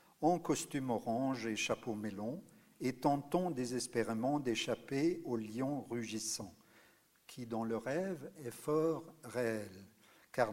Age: 50-69